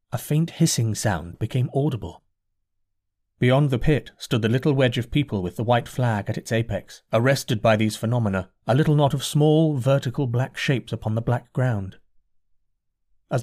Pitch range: 105-145 Hz